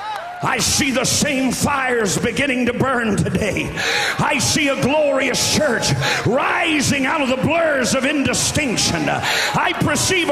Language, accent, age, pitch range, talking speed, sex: English, American, 50-69, 230-325 Hz, 135 wpm, male